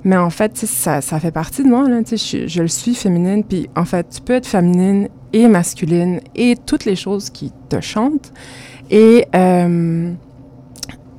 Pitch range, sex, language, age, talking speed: 160-200 Hz, female, French, 20-39, 190 wpm